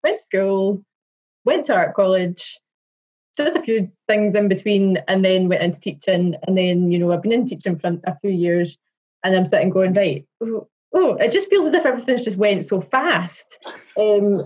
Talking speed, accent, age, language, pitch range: 200 wpm, British, 20-39, English, 185-240 Hz